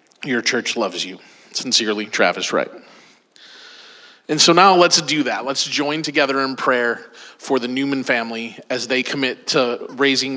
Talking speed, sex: 155 wpm, male